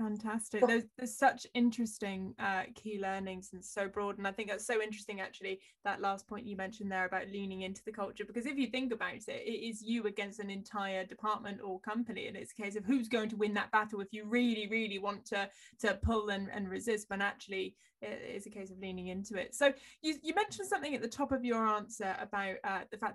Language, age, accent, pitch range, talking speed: English, 10-29, British, 200-230 Hz, 235 wpm